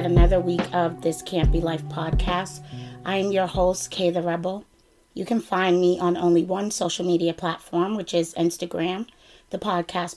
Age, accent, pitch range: 30-49, American, 175-200 Hz